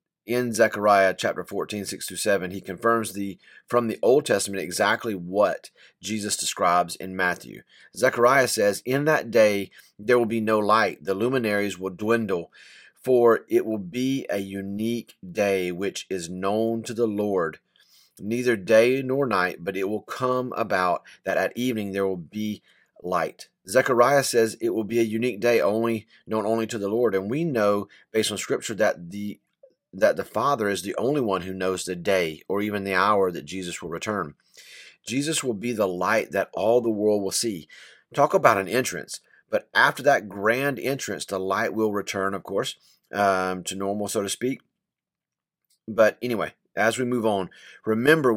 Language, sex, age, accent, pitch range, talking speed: English, male, 30-49, American, 100-120 Hz, 175 wpm